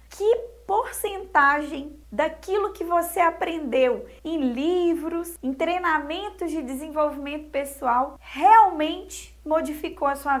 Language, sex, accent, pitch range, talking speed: Portuguese, female, Brazilian, 290-370 Hz, 100 wpm